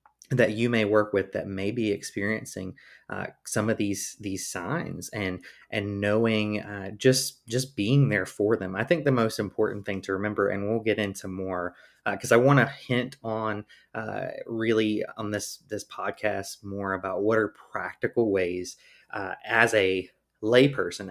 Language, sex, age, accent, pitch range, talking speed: English, male, 20-39, American, 95-110 Hz, 175 wpm